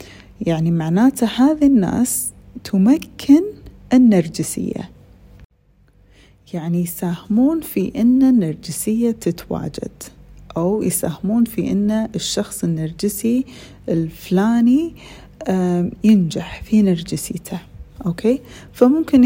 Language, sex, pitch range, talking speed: Arabic, female, 175-240 Hz, 75 wpm